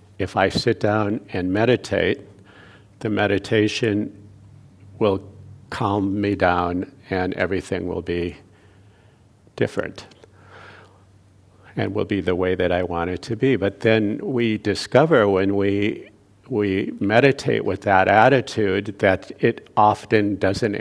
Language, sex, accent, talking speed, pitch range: English, male, American, 125 wpm, 95-110 Hz